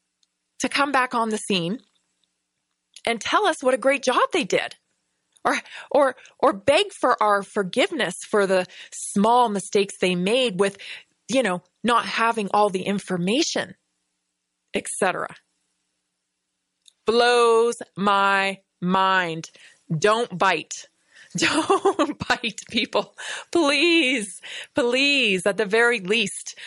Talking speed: 115 wpm